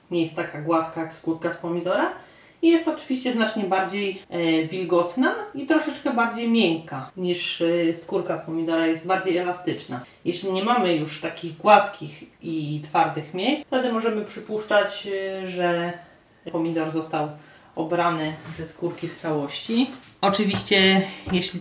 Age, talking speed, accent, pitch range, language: 30-49, 130 wpm, native, 160-200 Hz, Polish